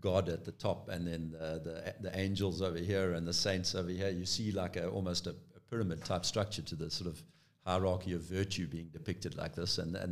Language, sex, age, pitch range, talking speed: English, male, 50-69, 90-130 Hz, 235 wpm